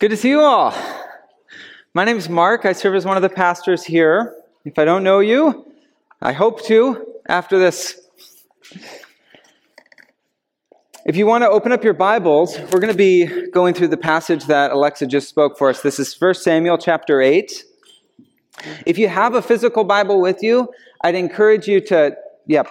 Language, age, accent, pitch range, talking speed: English, 30-49, American, 160-215 Hz, 180 wpm